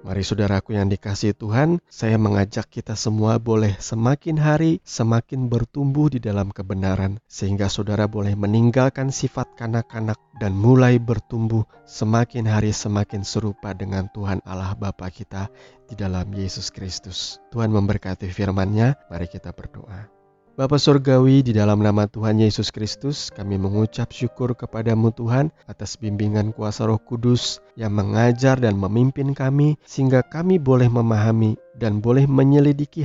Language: Indonesian